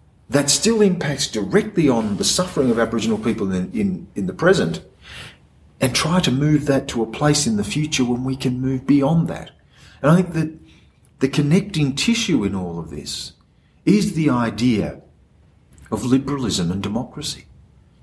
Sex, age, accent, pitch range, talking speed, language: male, 40-59, Australian, 125-160 Hz, 165 wpm, English